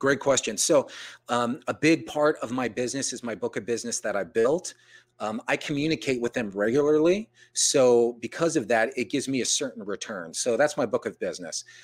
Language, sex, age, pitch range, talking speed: English, male, 30-49, 115-145 Hz, 205 wpm